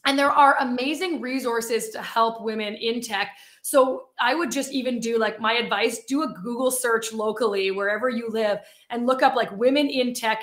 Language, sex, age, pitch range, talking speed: English, female, 20-39, 220-265 Hz, 195 wpm